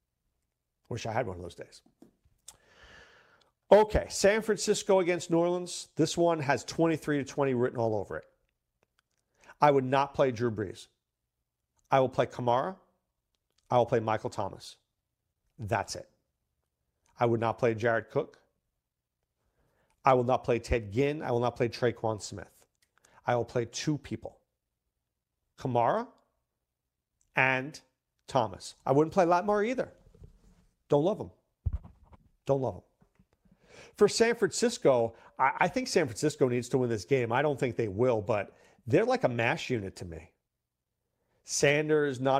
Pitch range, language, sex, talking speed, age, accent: 115-150 Hz, English, male, 150 wpm, 40-59, American